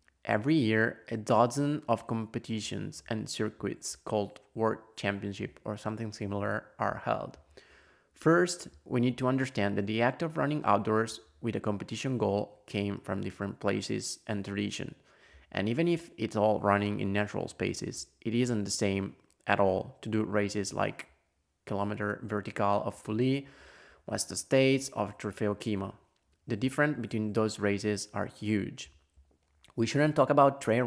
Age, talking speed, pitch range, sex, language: 20-39, 150 wpm, 100-130 Hz, male, English